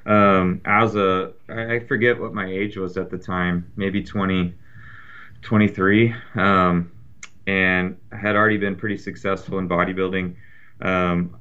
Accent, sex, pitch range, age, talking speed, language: American, male, 90-105 Hz, 30-49, 135 wpm, English